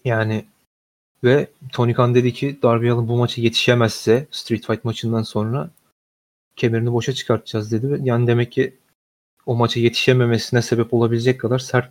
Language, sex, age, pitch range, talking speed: Turkish, male, 30-49, 115-130 Hz, 140 wpm